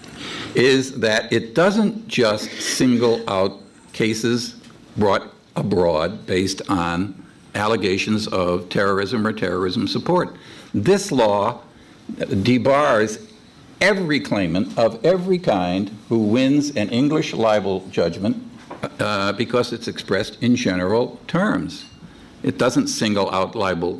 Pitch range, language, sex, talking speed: 100-125 Hz, English, male, 110 wpm